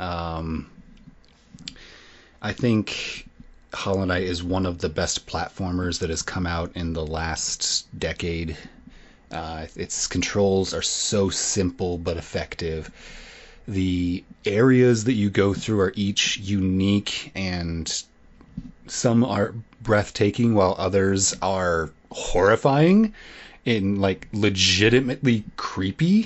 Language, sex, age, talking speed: English, male, 30-49, 105 wpm